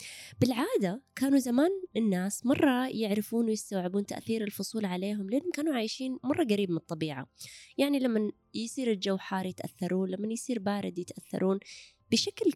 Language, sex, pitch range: Arabic, female, 175-225 Hz